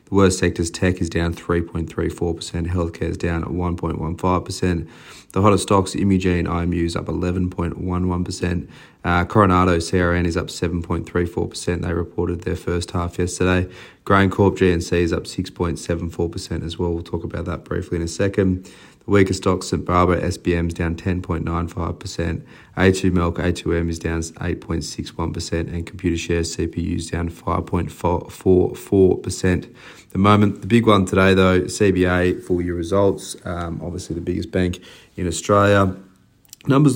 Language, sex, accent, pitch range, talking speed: English, male, Australian, 85-95 Hz, 140 wpm